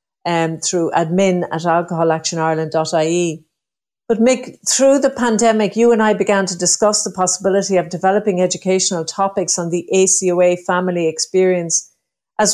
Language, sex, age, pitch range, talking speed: English, female, 50-69, 175-205 Hz, 135 wpm